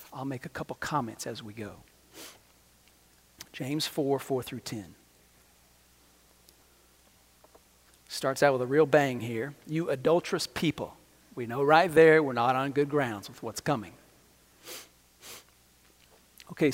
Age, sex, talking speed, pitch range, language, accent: 40-59, male, 130 wpm, 100-145 Hz, English, American